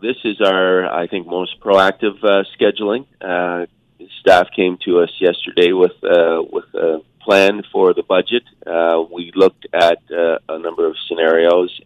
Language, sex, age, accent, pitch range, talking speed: English, male, 40-59, American, 85-105 Hz, 160 wpm